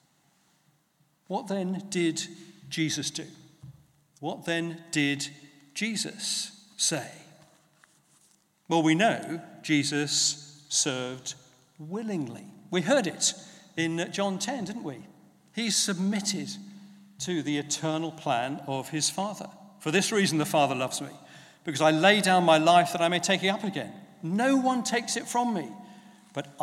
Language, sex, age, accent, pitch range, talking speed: English, male, 50-69, British, 150-190 Hz, 135 wpm